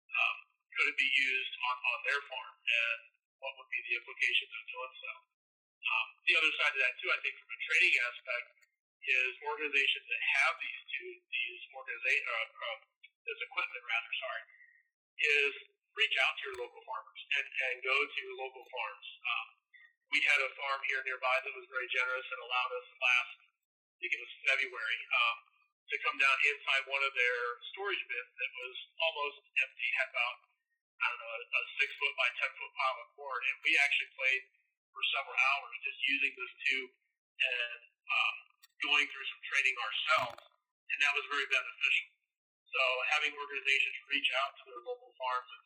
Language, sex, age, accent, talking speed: English, male, 40-59, American, 180 wpm